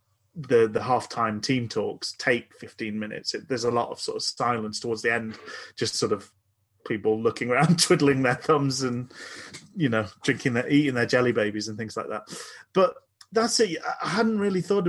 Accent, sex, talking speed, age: British, male, 200 wpm, 30-49